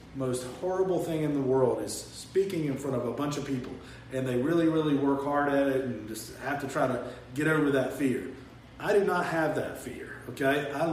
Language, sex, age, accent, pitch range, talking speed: English, male, 40-59, American, 130-160 Hz, 225 wpm